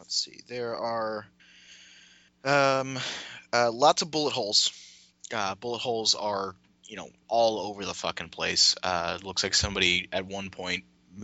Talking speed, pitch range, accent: 155 wpm, 85-105 Hz, American